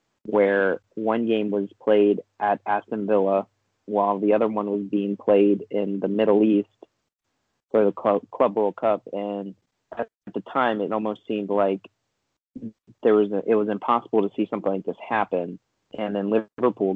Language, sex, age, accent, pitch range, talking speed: English, male, 30-49, American, 100-105 Hz, 165 wpm